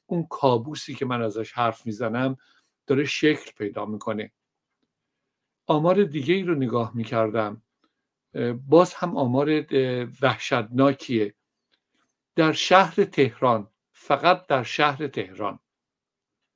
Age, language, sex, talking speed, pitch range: 60-79, Persian, male, 100 wpm, 120-150 Hz